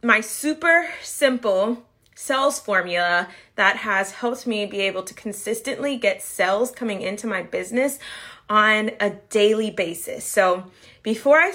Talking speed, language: 135 wpm, English